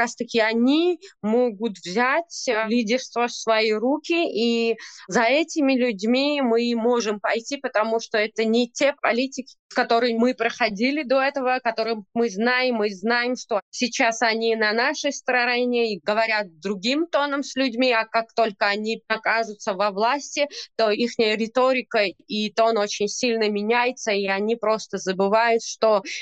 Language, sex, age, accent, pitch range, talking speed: Ukrainian, female, 20-39, native, 220-255 Hz, 145 wpm